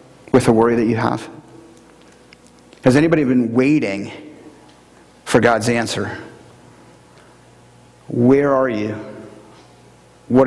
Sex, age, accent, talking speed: male, 40-59, American, 95 wpm